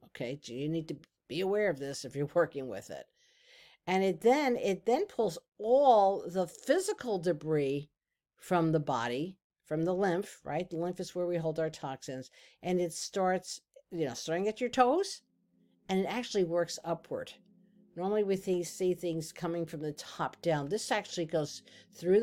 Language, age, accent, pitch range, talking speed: English, 50-69, American, 150-200 Hz, 175 wpm